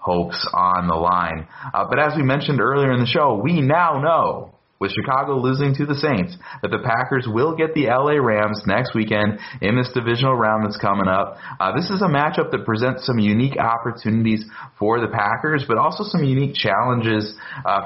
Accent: American